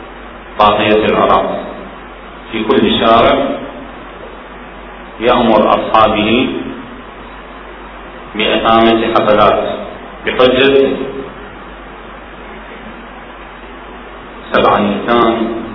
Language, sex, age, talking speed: Arabic, male, 40-59, 45 wpm